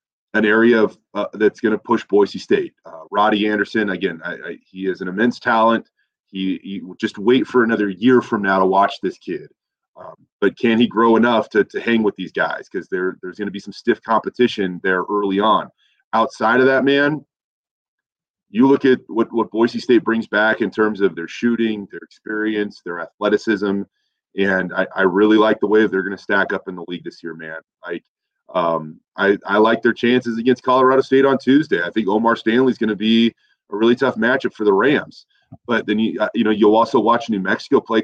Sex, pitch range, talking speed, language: male, 100-120 Hz, 215 wpm, English